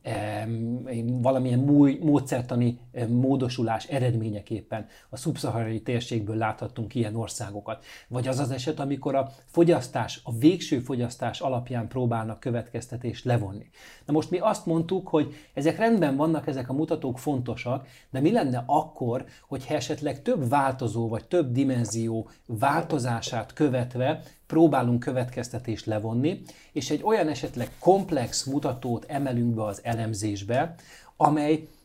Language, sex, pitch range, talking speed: Hungarian, male, 115-150 Hz, 120 wpm